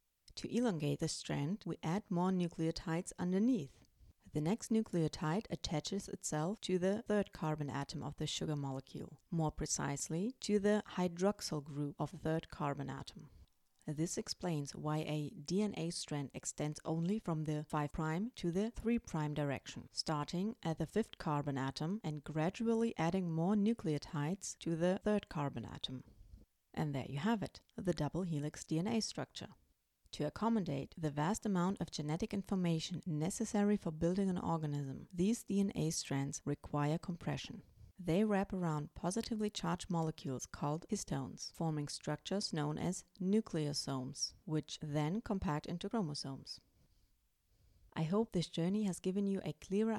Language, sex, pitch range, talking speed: English, female, 150-195 Hz, 145 wpm